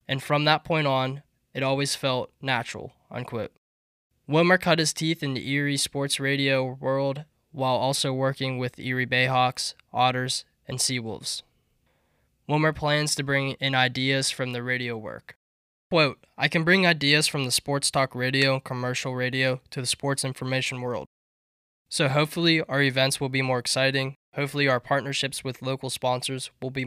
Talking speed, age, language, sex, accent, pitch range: 165 wpm, 10-29, English, male, American, 125-140 Hz